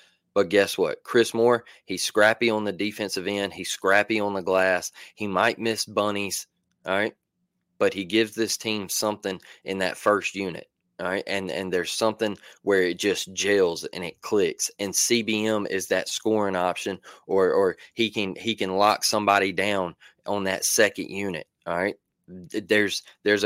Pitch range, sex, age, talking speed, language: 100-115 Hz, male, 20-39, 175 wpm, English